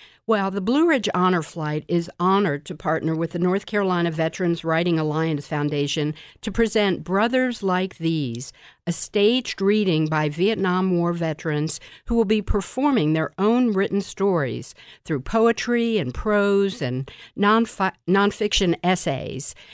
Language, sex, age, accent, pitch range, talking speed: English, female, 50-69, American, 160-205 Hz, 135 wpm